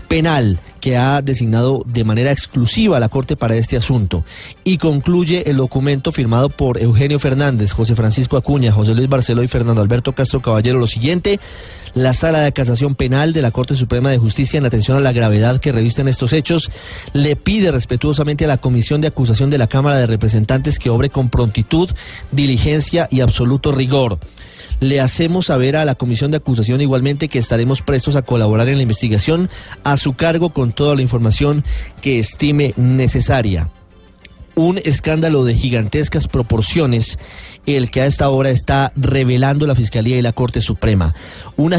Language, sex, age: Spanish, male, 30-49